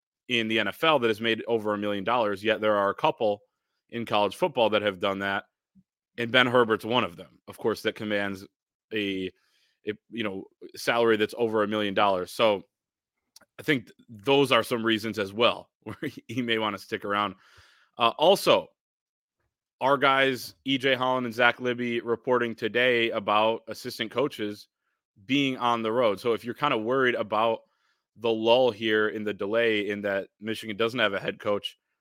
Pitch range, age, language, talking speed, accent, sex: 105-120 Hz, 30-49, English, 180 wpm, American, male